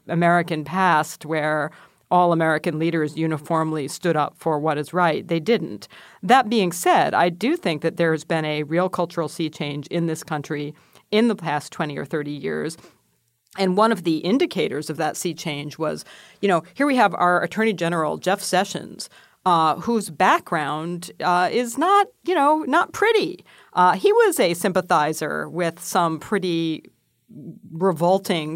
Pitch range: 155-190 Hz